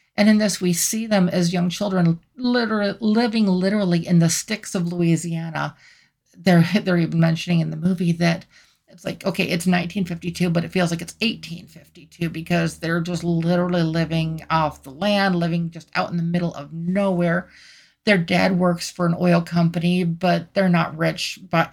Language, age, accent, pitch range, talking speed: English, 50-69, American, 170-195 Hz, 175 wpm